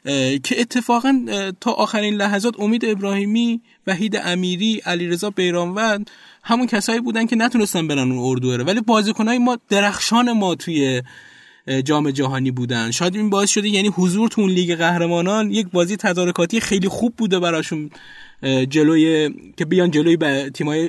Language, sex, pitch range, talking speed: Persian, male, 140-215 Hz, 140 wpm